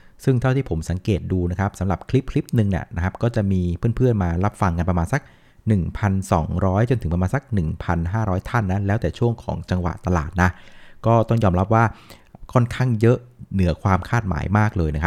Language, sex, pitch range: Thai, male, 90-115 Hz